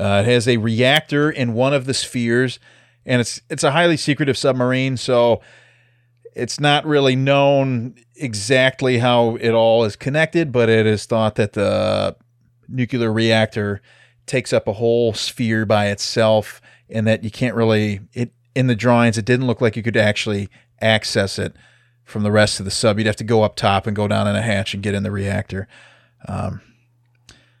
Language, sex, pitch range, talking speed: English, male, 115-145 Hz, 185 wpm